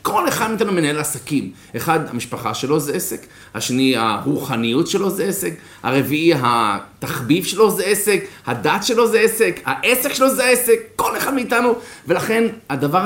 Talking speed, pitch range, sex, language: 150 wpm, 145-235 Hz, male, Hebrew